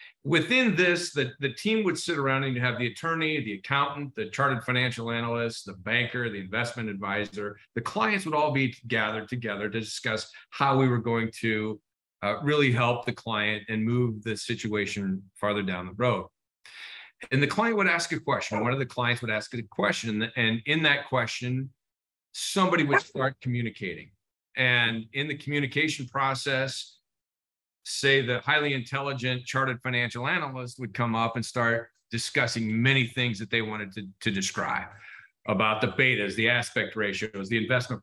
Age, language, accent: 40-59, English, American